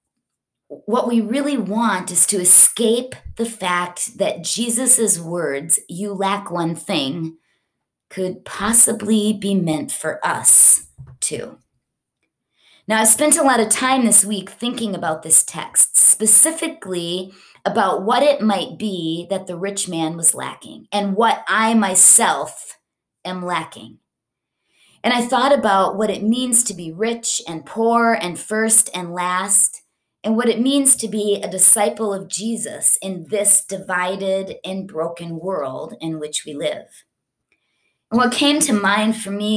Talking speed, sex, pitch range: 145 wpm, female, 180-225 Hz